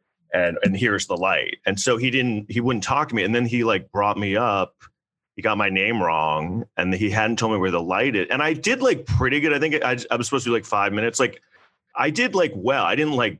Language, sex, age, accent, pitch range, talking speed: English, male, 30-49, American, 95-125 Hz, 270 wpm